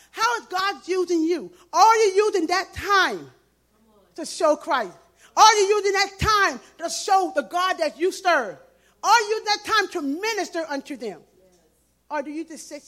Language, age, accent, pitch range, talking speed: English, 40-59, American, 210-290 Hz, 180 wpm